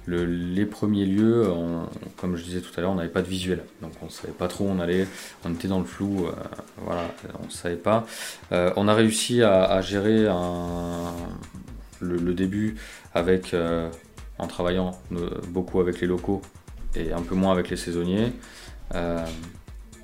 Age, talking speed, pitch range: 30-49, 190 wpm, 85-100 Hz